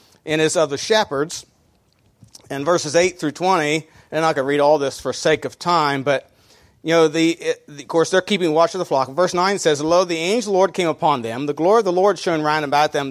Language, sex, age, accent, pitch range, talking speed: English, male, 40-59, American, 145-180 Hz, 250 wpm